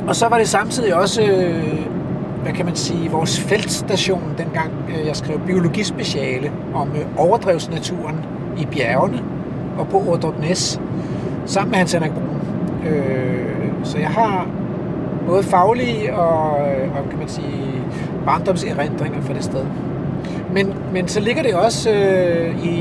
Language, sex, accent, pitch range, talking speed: Danish, male, native, 160-195 Hz, 125 wpm